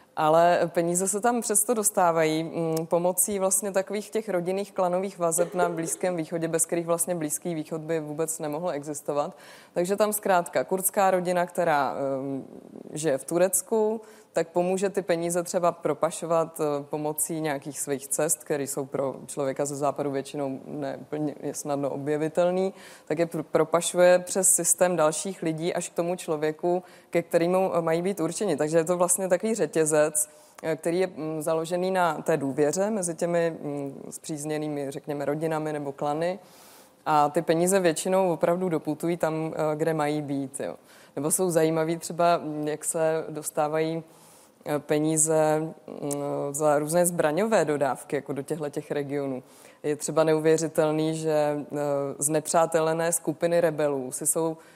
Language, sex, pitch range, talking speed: Czech, female, 150-180 Hz, 140 wpm